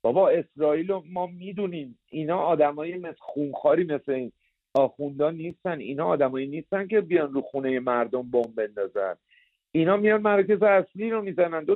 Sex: male